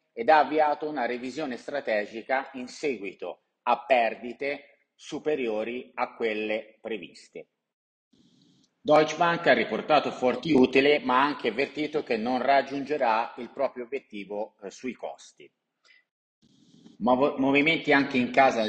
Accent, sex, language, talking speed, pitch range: native, male, Italian, 120 wpm, 115-145 Hz